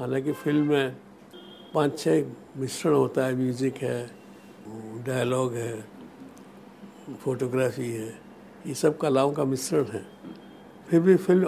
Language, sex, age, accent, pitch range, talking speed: Hindi, male, 60-79, native, 125-160 Hz, 120 wpm